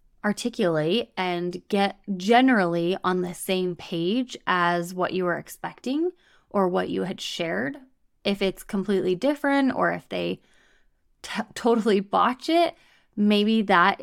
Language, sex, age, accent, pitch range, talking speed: English, female, 20-39, American, 185-225 Hz, 135 wpm